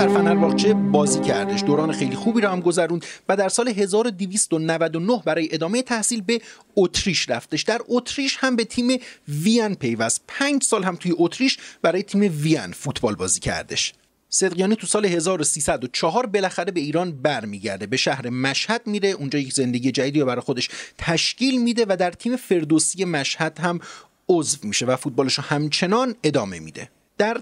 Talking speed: 160 wpm